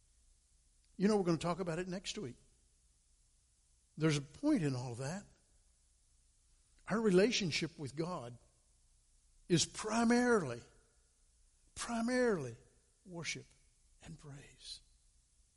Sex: male